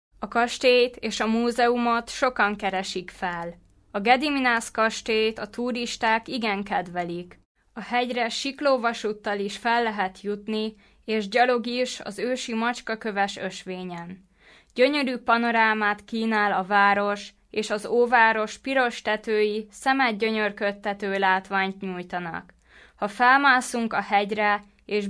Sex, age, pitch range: female, 20-39, 205-235 Hz